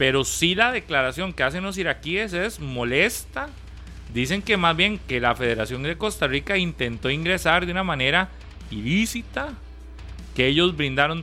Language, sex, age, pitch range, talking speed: Spanish, male, 30-49, 120-180 Hz, 155 wpm